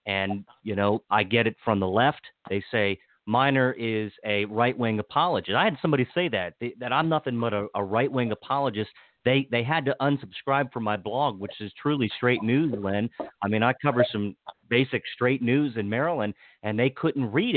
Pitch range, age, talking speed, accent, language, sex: 100-130 Hz, 40-59, 200 wpm, American, English, male